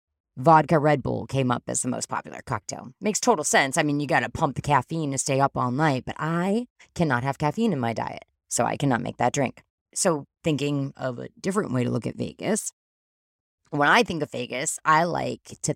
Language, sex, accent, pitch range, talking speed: English, female, American, 125-165 Hz, 220 wpm